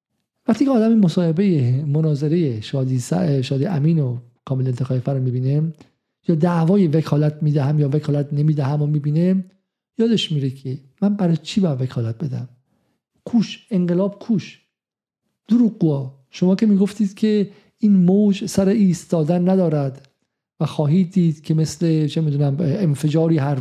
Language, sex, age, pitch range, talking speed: Persian, male, 50-69, 145-195 Hz, 135 wpm